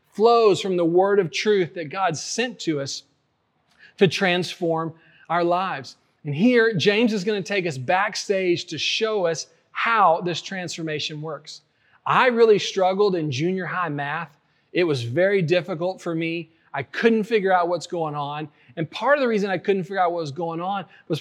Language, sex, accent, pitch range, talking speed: English, male, American, 170-215 Hz, 185 wpm